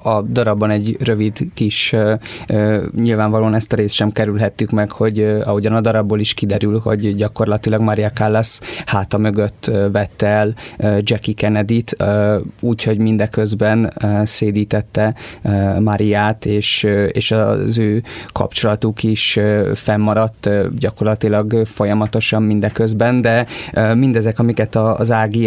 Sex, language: male, Hungarian